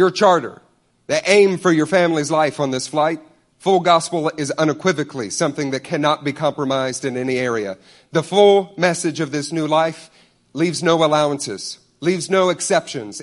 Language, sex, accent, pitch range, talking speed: English, male, American, 155-195 Hz, 165 wpm